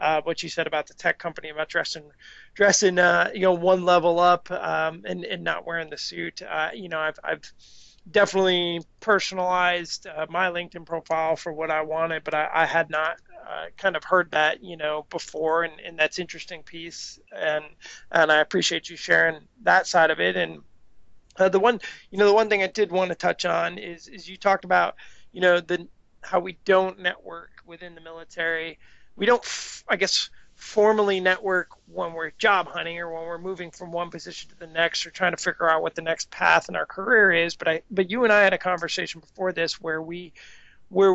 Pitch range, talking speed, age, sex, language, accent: 165-185 Hz, 210 wpm, 30-49, male, English, American